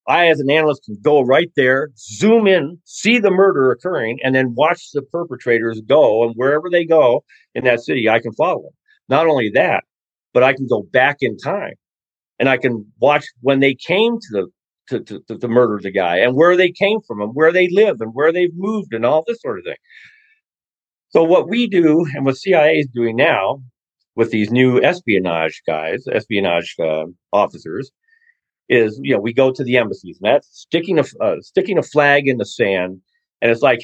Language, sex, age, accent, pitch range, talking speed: English, male, 50-69, American, 120-175 Hz, 205 wpm